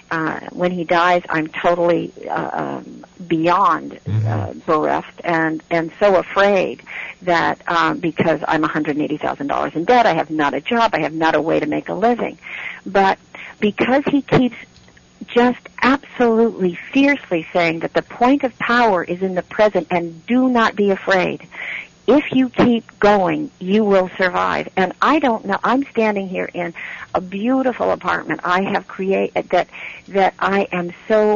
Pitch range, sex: 175-235 Hz, female